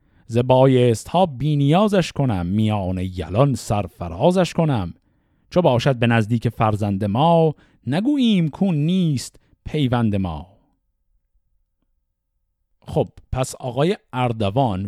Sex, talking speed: male, 95 wpm